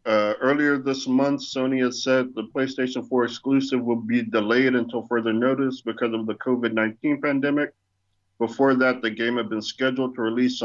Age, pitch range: 50-69, 110-135 Hz